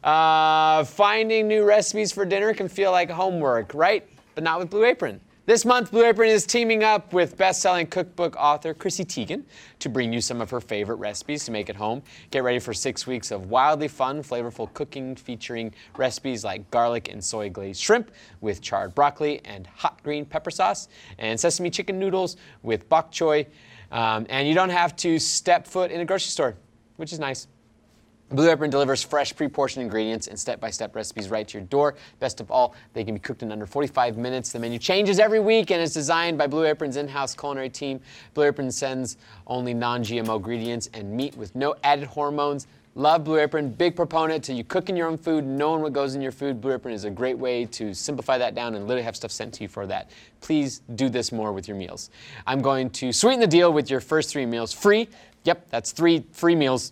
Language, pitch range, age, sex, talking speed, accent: English, 115-165 Hz, 30-49, male, 210 wpm, American